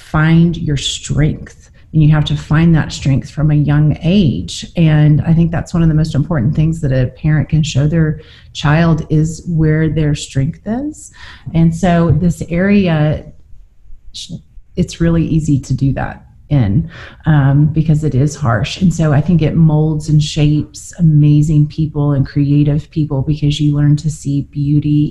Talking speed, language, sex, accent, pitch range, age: 170 wpm, English, female, American, 145-165 Hz, 30-49